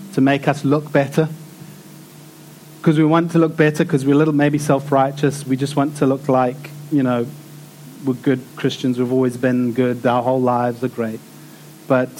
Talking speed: 185 wpm